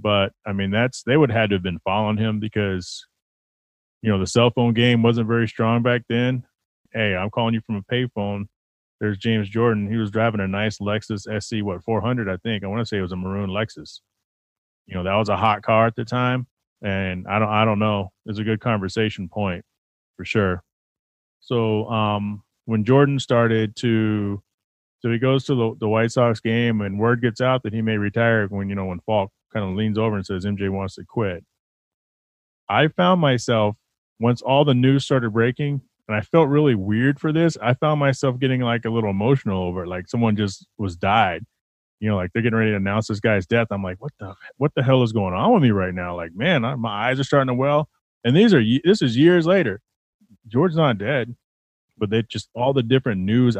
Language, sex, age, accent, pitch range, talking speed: English, male, 30-49, American, 100-120 Hz, 225 wpm